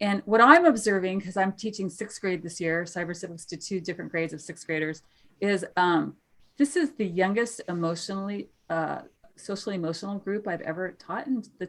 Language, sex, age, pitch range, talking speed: English, female, 30-49, 170-215 Hz, 185 wpm